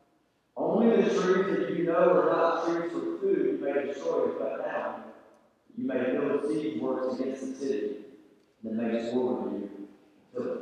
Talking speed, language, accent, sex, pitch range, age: 180 wpm, English, American, male, 135-220 Hz, 50-69